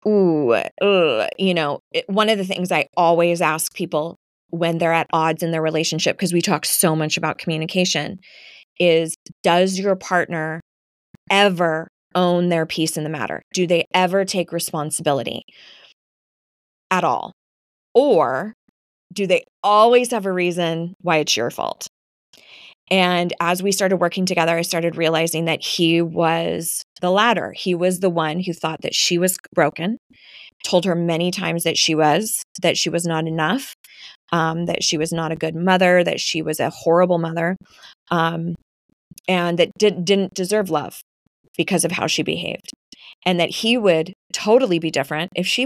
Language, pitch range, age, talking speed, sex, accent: English, 165-190 Hz, 20-39, 165 wpm, female, American